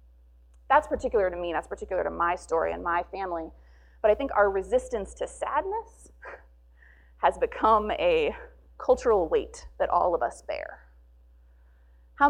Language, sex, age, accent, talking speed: English, female, 30-49, American, 145 wpm